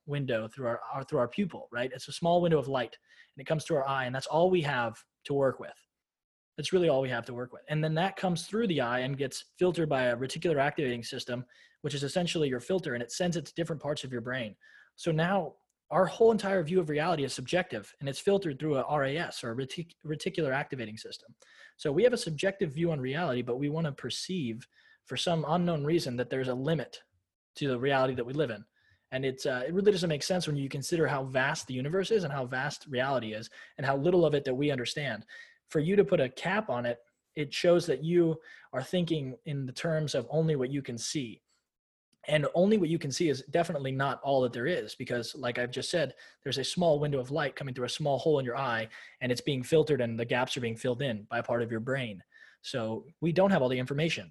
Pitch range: 125-165 Hz